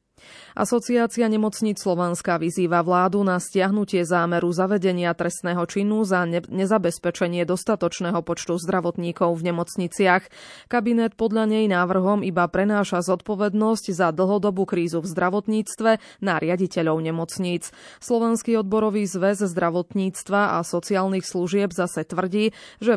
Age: 20-39